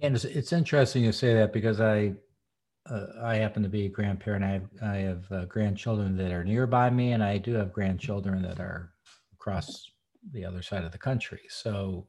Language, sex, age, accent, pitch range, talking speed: English, male, 50-69, American, 95-125 Hz, 205 wpm